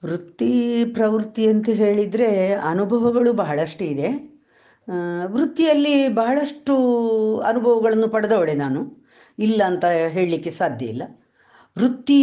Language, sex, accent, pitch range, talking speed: Kannada, female, native, 145-225 Hz, 90 wpm